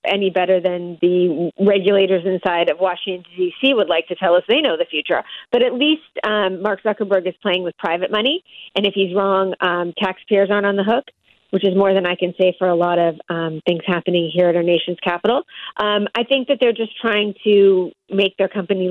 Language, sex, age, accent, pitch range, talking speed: English, female, 30-49, American, 180-205 Hz, 220 wpm